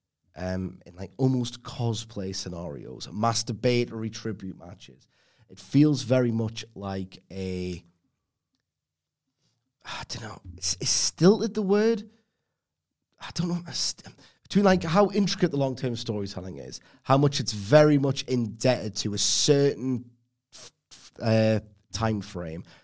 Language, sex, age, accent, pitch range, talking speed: English, male, 30-49, British, 100-130 Hz, 120 wpm